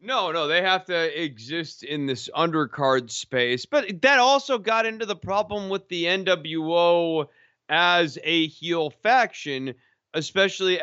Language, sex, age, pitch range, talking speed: English, male, 30-49, 135-195 Hz, 140 wpm